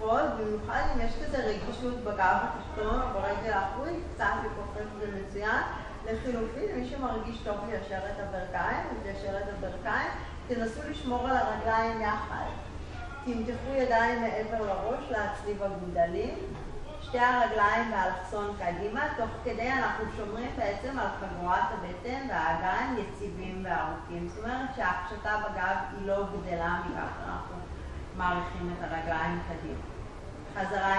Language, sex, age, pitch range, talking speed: Hebrew, female, 30-49, 165-220 Hz, 120 wpm